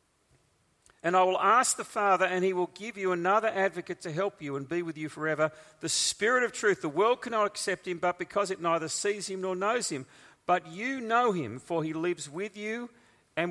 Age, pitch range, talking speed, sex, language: 50-69, 140-195 Hz, 220 wpm, male, English